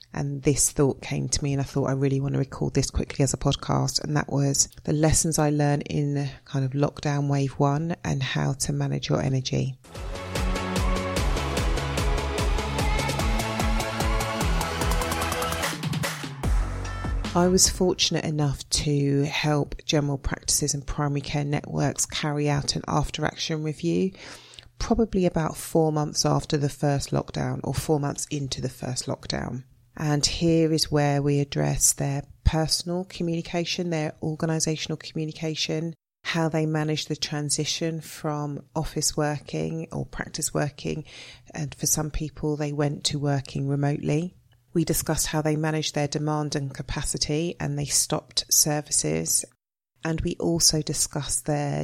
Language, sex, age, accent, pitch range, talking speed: English, female, 30-49, British, 130-155 Hz, 140 wpm